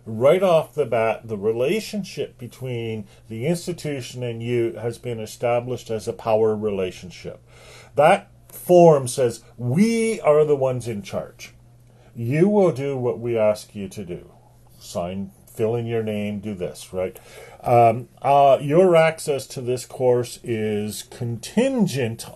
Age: 50-69